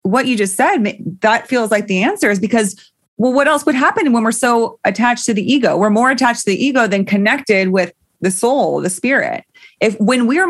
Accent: American